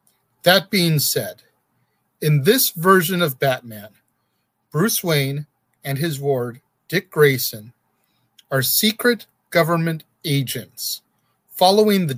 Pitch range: 130-185 Hz